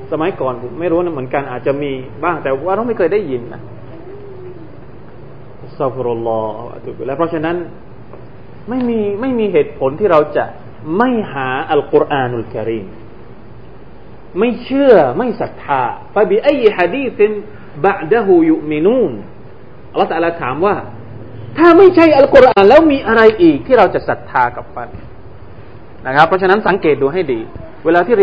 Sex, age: male, 30-49